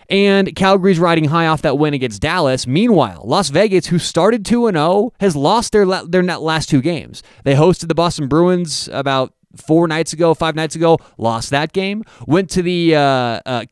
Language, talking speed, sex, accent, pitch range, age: English, 195 wpm, male, American, 140-185 Hz, 30-49